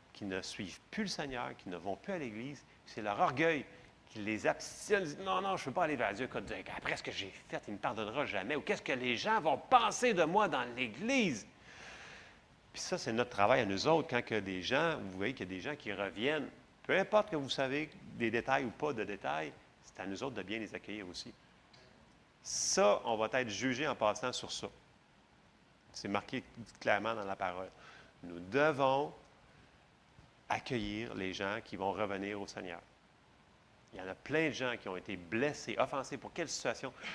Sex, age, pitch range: male, 40-59, 105-150 Hz